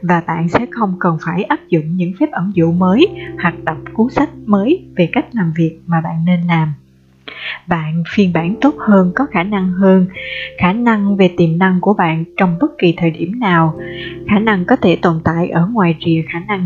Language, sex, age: Vietnamese, female, 20-39